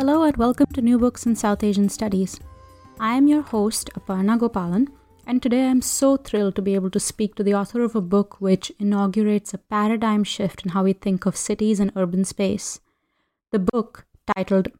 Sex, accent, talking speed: female, Indian, 205 wpm